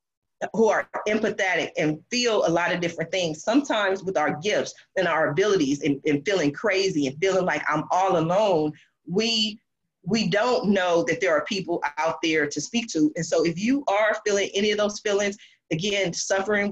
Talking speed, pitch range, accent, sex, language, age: 185 wpm, 170-215 Hz, American, female, English, 30-49